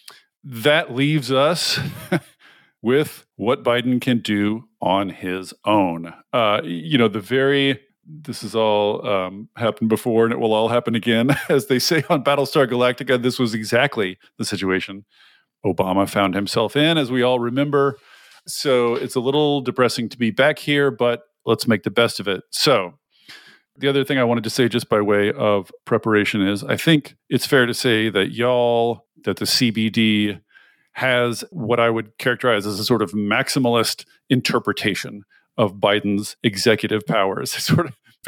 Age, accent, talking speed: 40-59, American, 165 wpm